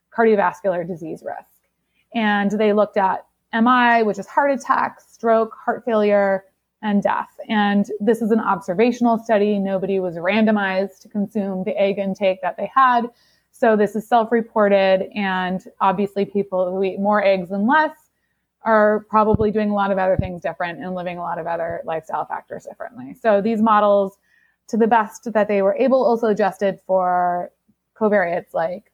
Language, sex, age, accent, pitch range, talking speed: English, female, 20-39, American, 195-230 Hz, 165 wpm